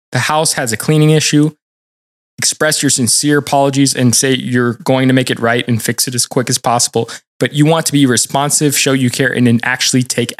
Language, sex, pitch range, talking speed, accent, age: English, male, 120-150 Hz, 220 wpm, American, 20-39